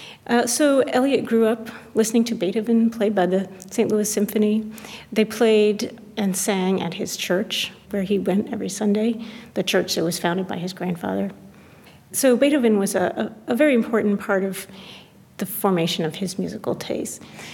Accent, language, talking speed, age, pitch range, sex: American, English, 170 wpm, 40-59, 180-215 Hz, female